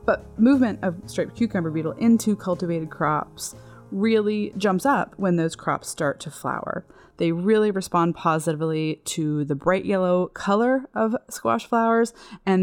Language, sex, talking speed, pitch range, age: English, female, 145 wpm, 160-215 Hz, 20-39